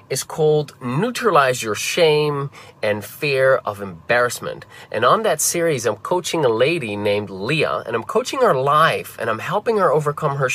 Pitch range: 115-170 Hz